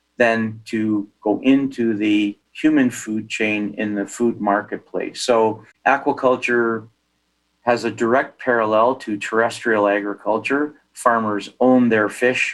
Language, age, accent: English, 40-59, American